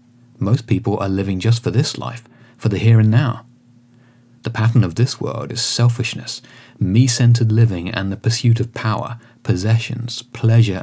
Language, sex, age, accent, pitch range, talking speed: English, male, 30-49, British, 105-120 Hz, 160 wpm